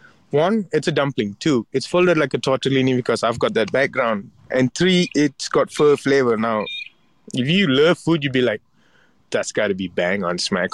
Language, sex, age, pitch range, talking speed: English, male, 20-39, 115-150 Hz, 200 wpm